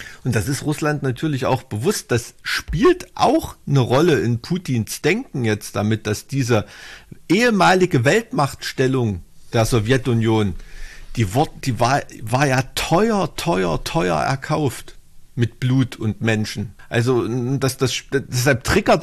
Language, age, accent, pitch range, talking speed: German, 50-69, German, 110-140 Hz, 130 wpm